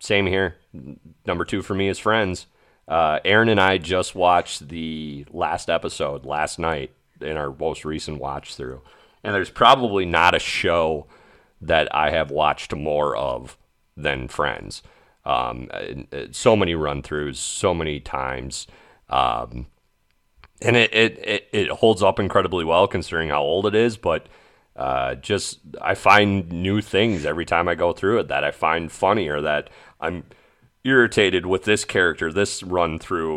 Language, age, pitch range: English, 30-49, 75-100 Hz